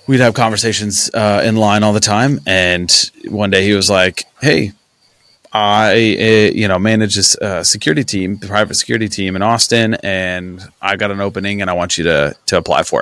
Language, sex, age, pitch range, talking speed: English, male, 30-49, 95-115 Hz, 205 wpm